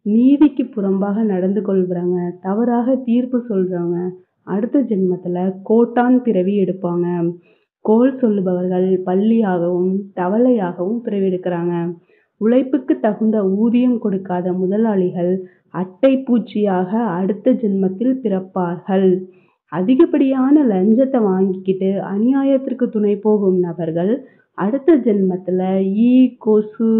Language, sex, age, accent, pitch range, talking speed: Tamil, female, 30-49, native, 185-235 Hz, 55 wpm